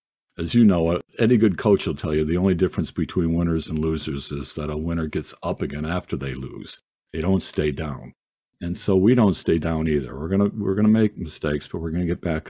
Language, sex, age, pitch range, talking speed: English, male, 50-69, 80-100 Hz, 240 wpm